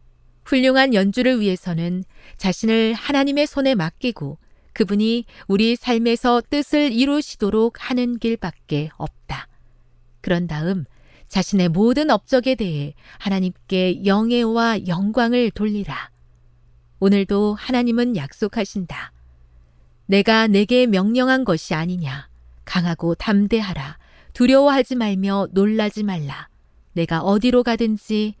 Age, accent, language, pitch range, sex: 40-59, native, Korean, 160-230 Hz, female